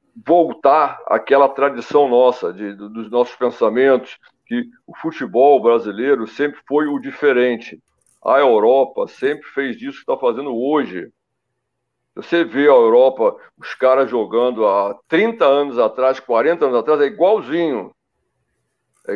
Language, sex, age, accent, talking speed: Portuguese, male, 60-79, Brazilian, 130 wpm